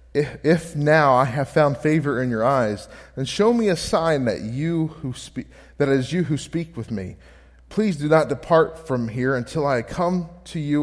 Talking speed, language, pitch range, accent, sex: 205 wpm, English, 120-160 Hz, American, male